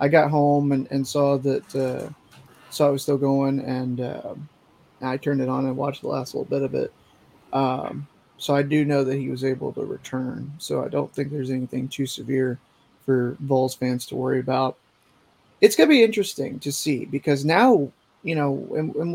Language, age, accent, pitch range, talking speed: English, 30-49, American, 135-175 Hz, 200 wpm